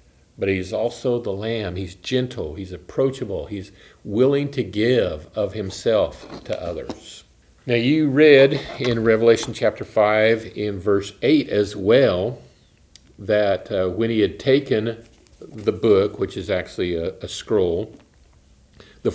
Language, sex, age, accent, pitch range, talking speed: English, male, 50-69, American, 105-140 Hz, 140 wpm